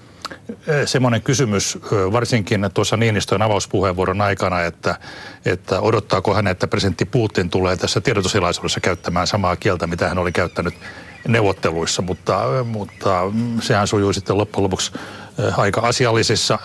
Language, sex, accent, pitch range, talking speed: Finnish, male, native, 95-115 Hz, 125 wpm